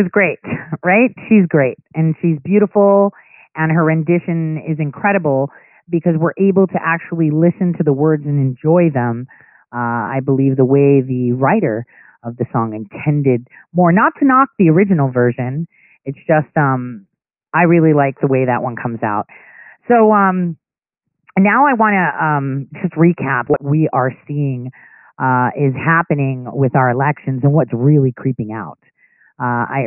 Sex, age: female, 40-59